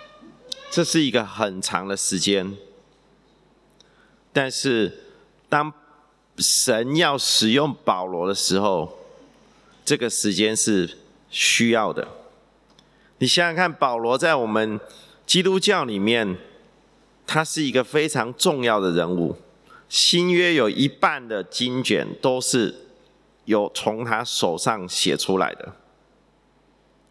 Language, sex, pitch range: English, male, 105-155 Hz